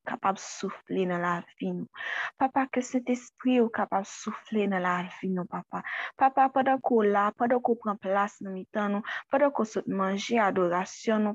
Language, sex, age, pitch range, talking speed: French, female, 20-39, 195-250 Hz, 185 wpm